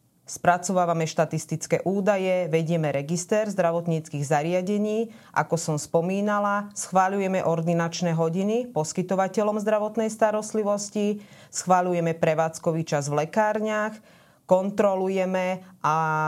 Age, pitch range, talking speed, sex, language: 30-49, 165-190 Hz, 85 wpm, female, Slovak